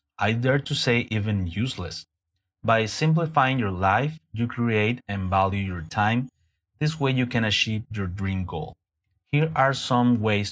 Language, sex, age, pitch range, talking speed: Spanish, male, 30-49, 95-120 Hz, 160 wpm